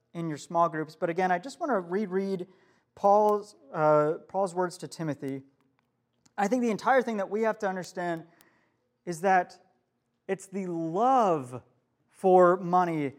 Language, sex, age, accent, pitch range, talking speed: English, male, 30-49, American, 145-195 Hz, 145 wpm